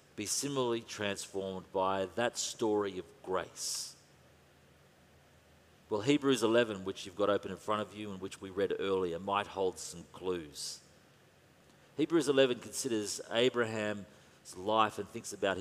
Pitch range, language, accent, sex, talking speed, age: 100-130 Hz, English, Australian, male, 140 wpm, 40-59